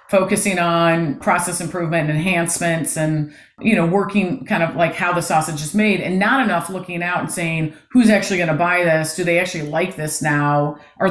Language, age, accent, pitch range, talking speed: English, 40-59, American, 160-200 Hz, 205 wpm